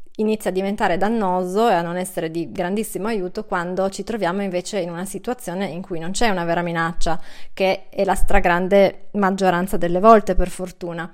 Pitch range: 175-210 Hz